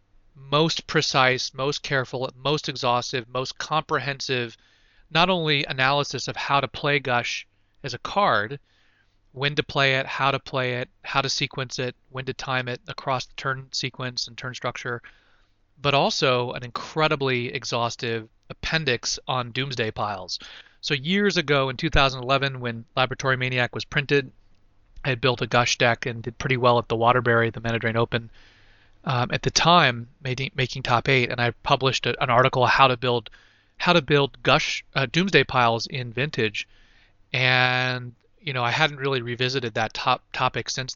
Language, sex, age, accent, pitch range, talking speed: English, male, 30-49, American, 115-140 Hz, 170 wpm